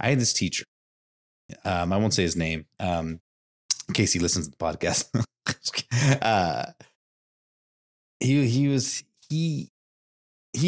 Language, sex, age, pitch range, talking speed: English, male, 30-49, 90-115 Hz, 130 wpm